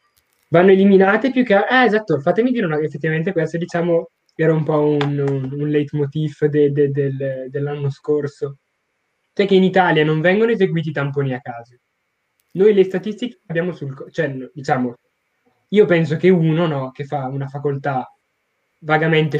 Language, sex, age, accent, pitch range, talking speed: Italian, male, 20-39, native, 145-180 Hz, 165 wpm